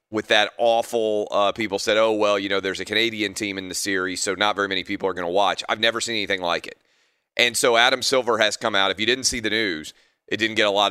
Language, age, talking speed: English, 30-49, 275 wpm